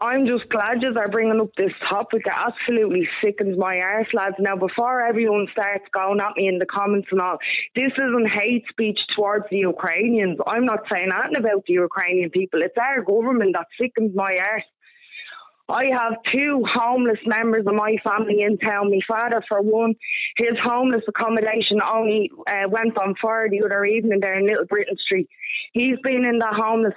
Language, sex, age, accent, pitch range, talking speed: English, female, 20-39, Irish, 205-245 Hz, 185 wpm